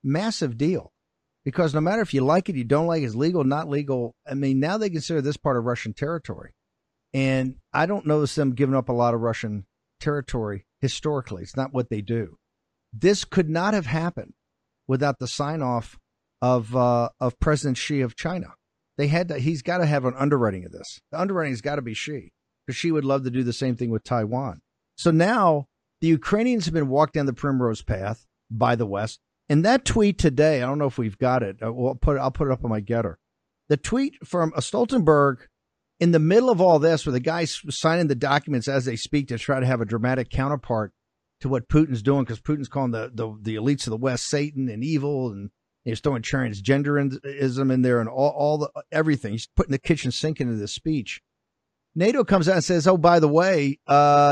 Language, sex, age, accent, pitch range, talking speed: English, male, 50-69, American, 125-155 Hz, 220 wpm